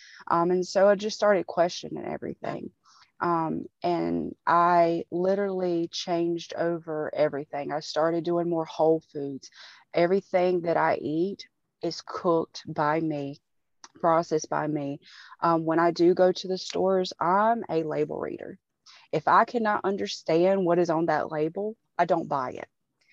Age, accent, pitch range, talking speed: 30-49, American, 160-180 Hz, 150 wpm